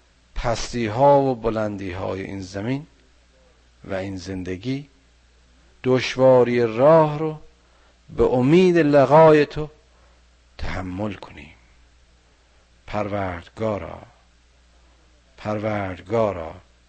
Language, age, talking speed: Persian, 50-69, 70 wpm